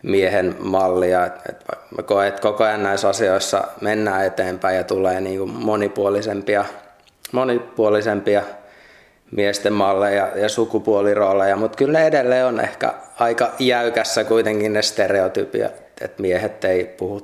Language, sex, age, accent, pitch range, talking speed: Finnish, male, 20-39, native, 100-115 Hz, 120 wpm